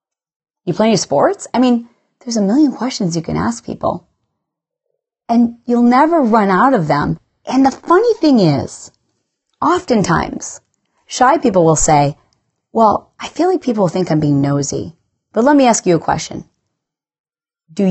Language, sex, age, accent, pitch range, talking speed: English, female, 30-49, American, 160-245 Hz, 160 wpm